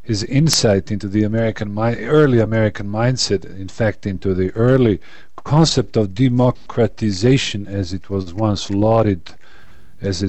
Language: English